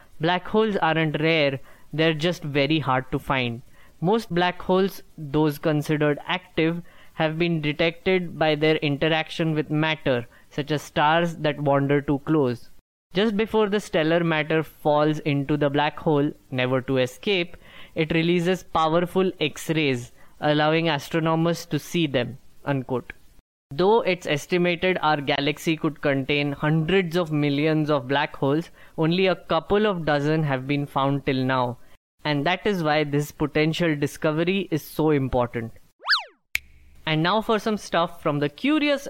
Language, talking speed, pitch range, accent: English, 145 wpm, 145-180 Hz, Indian